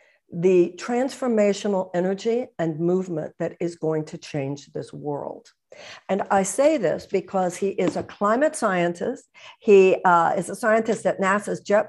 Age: 60-79